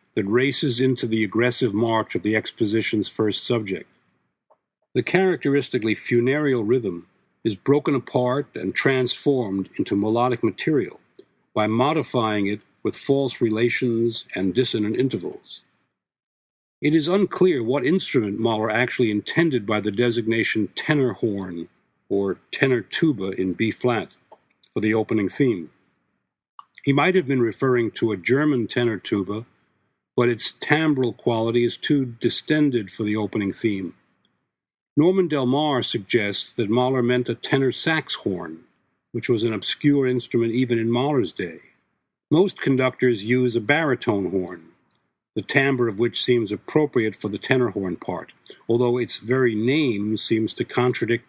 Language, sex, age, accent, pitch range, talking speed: English, male, 60-79, American, 110-130 Hz, 140 wpm